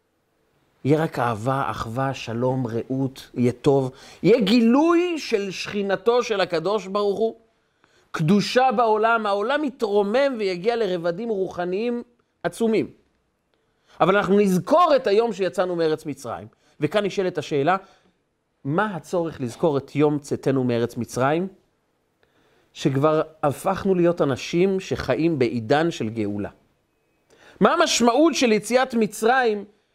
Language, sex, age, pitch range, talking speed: Hebrew, male, 40-59, 155-230 Hz, 110 wpm